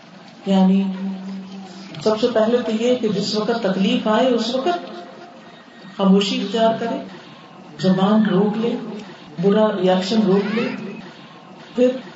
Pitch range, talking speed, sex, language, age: 185-225 Hz, 120 wpm, female, Urdu, 40-59